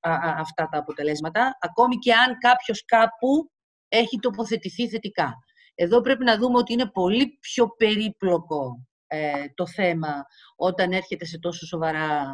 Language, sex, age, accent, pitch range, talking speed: Greek, female, 50-69, native, 165-220 Hz, 135 wpm